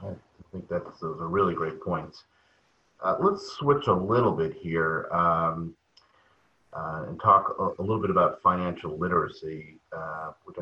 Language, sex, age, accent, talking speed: English, male, 40-59, American, 160 wpm